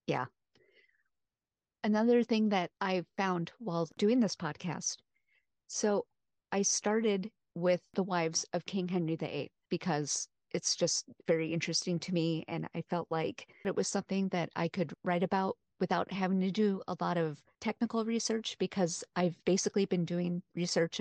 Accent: American